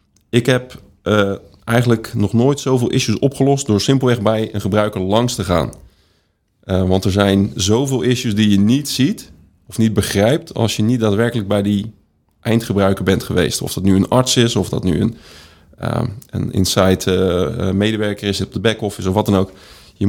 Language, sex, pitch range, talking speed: Dutch, male, 95-115 Hz, 180 wpm